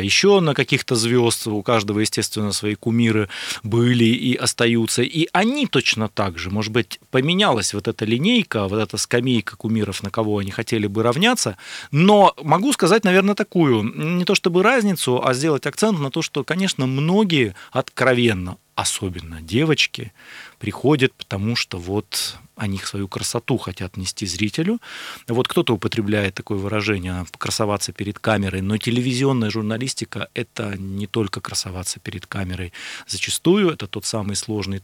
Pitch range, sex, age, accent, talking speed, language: 105-130 Hz, male, 30-49, native, 145 wpm, Russian